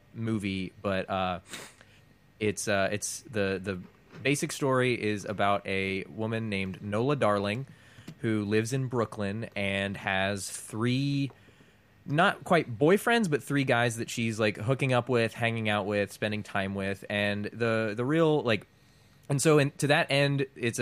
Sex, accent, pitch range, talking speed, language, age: male, American, 105-130 Hz, 155 wpm, English, 20-39